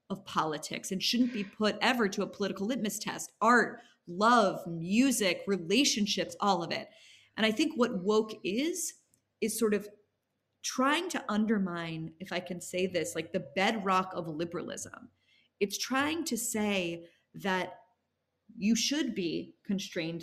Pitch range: 180-225 Hz